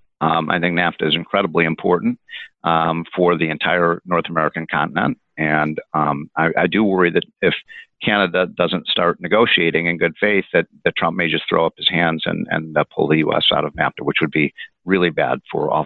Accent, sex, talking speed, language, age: American, male, 205 wpm, English, 50-69